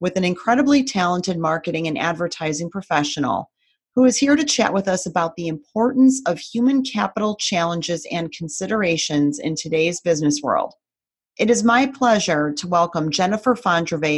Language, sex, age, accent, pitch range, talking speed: English, female, 30-49, American, 170-240 Hz, 150 wpm